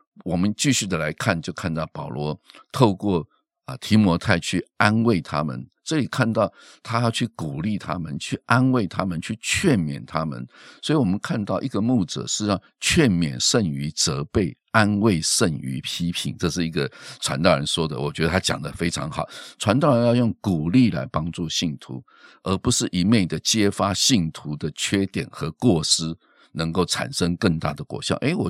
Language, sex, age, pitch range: Chinese, male, 50-69, 80-105 Hz